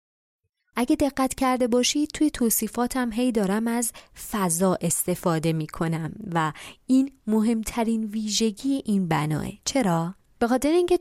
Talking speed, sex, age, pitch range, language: 125 wpm, female, 30-49, 185-255 Hz, Persian